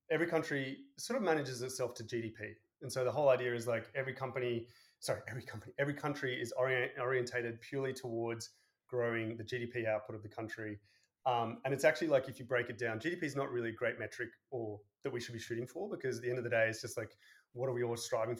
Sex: male